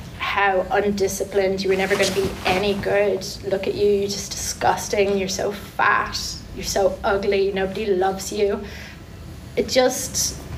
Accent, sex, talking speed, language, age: British, female, 155 wpm, English, 30-49